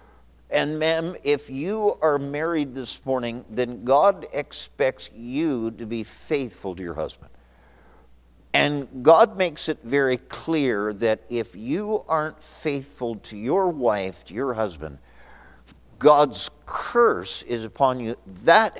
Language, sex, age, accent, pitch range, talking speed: English, male, 50-69, American, 110-155 Hz, 130 wpm